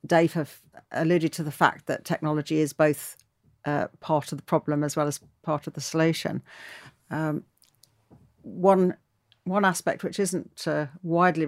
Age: 50-69